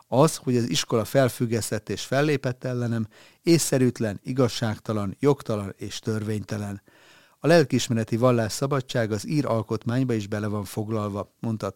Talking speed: 130 wpm